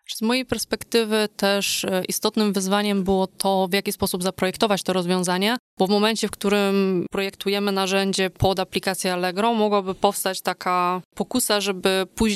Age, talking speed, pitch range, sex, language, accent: 20-39, 145 wpm, 185-210 Hz, female, Polish, native